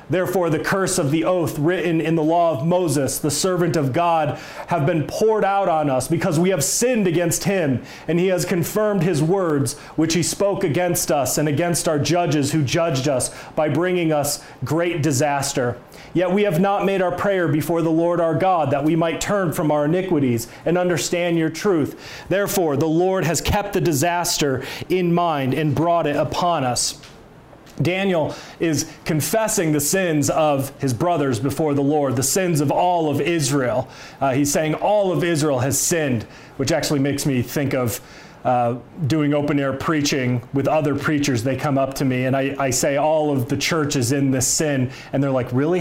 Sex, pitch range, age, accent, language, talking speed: male, 140-175 Hz, 30-49, American, English, 195 wpm